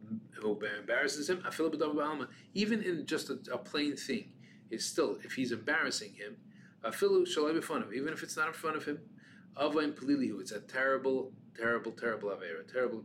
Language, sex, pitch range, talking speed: English, male, 140-230 Hz, 165 wpm